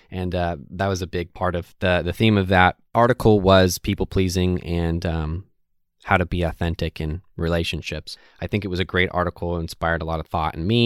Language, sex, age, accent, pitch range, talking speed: English, male, 20-39, American, 85-100 Hz, 215 wpm